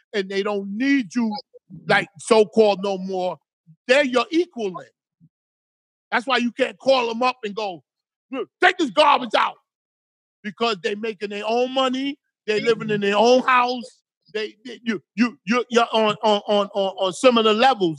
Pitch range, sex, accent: 195-265 Hz, male, American